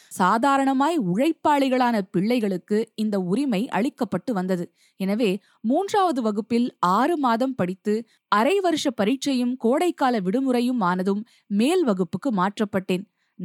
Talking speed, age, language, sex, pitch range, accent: 100 wpm, 20-39, Tamil, female, 190-260 Hz, native